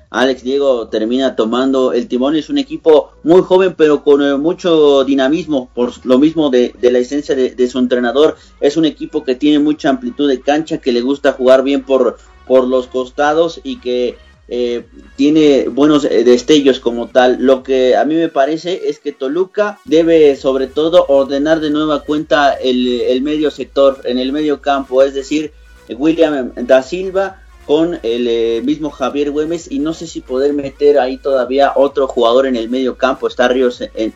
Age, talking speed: 40-59, 185 wpm